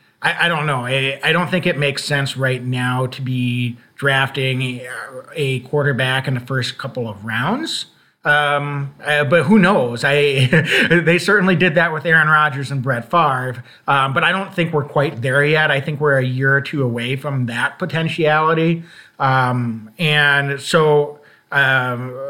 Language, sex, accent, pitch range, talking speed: English, male, American, 130-155 Hz, 170 wpm